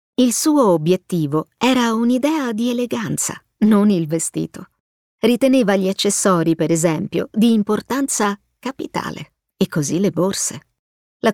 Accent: native